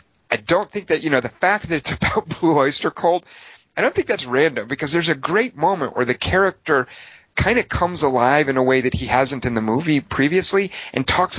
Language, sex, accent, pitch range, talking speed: English, male, American, 125-170 Hz, 225 wpm